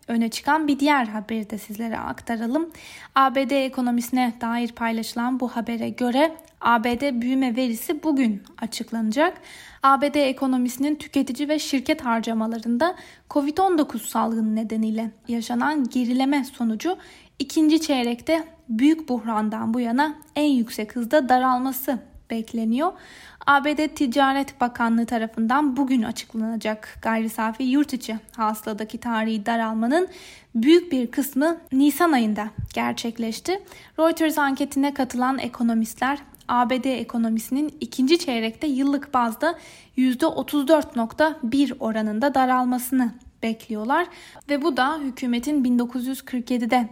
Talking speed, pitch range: 105 wpm, 230-285 Hz